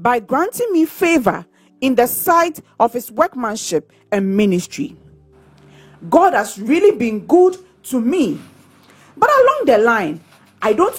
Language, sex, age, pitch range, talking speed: English, female, 40-59, 225-350 Hz, 135 wpm